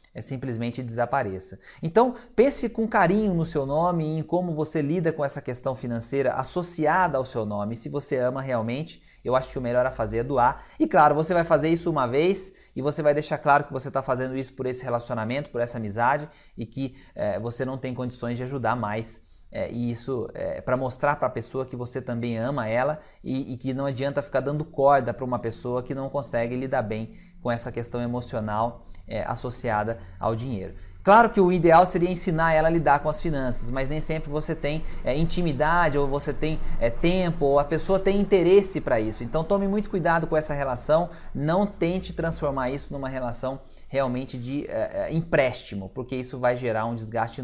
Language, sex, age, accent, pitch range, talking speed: Portuguese, male, 20-39, Brazilian, 120-160 Hz, 200 wpm